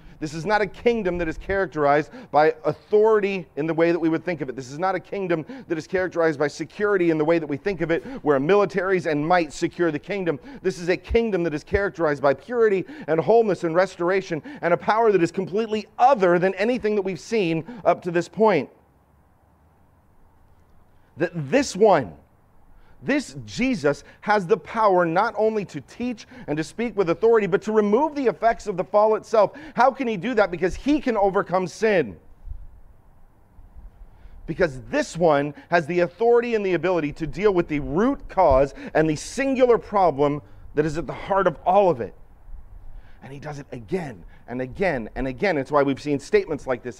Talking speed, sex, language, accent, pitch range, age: 195 wpm, male, English, American, 135-195 Hz, 40-59